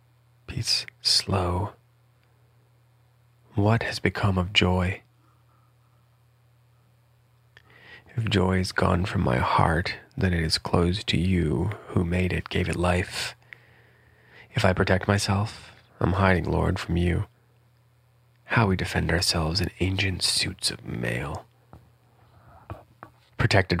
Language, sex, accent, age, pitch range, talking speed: English, male, American, 30-49, 90-120 Hz, 115 wpm